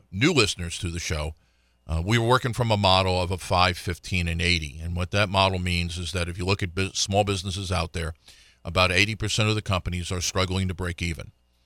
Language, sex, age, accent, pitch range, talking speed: English, male, 50-69, American, 90-110 Hz, 225 wpm